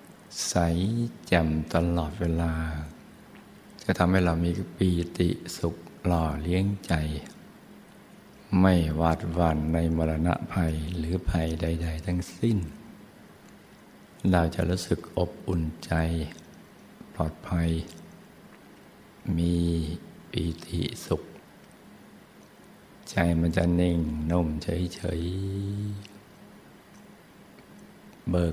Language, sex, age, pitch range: Thai, male, 60-79, 80-95 Hz